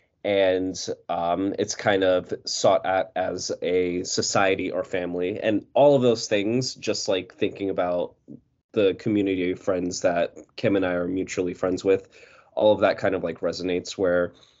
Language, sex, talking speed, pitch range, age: English, male, 170 wpm, 90-105 Hz, 20-39